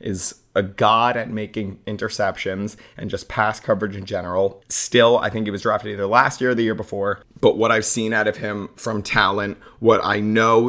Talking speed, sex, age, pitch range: 210 wpm, male, 30-49, 100-115 Hz